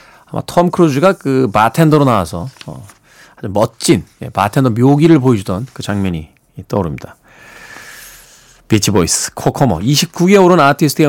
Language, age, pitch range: Korean, 40-59, 105-160 Hz